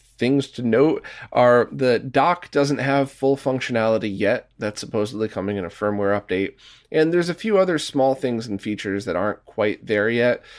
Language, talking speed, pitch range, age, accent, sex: English, 180 wpm, 105-140 Hz, 30-49, American, male